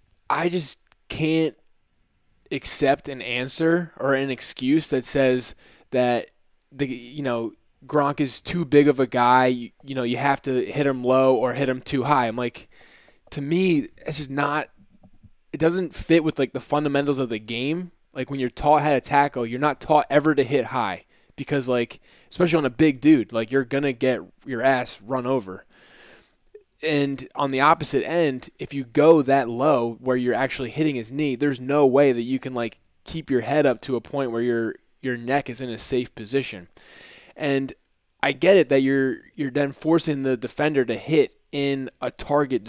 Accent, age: American, 20-39